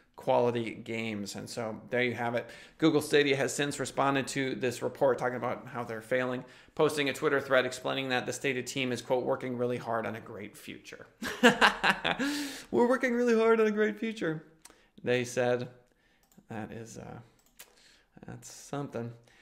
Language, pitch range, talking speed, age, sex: English, 120-140 Hz, 165 wpm, 20-39, male